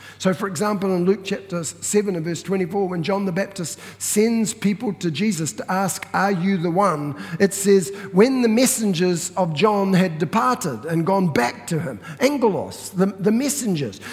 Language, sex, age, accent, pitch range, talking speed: English, male, 50-69, Australian, 165-225 Hz, 180 wpm